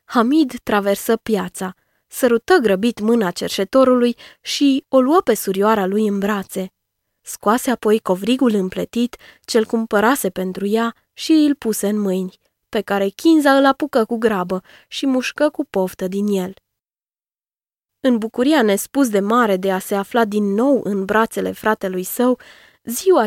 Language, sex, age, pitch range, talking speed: Romanian, female, 20-39, 200-255 Hz, 145 wpm